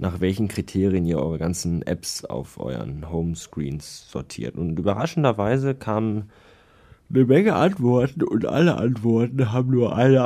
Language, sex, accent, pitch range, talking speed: German, male, German, 85-105 Hz, 135 wpm